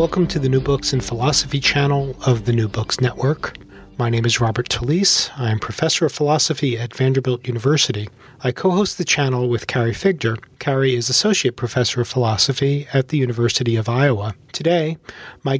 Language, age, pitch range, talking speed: English, 40-59, 120-165 Hz, 175 wpm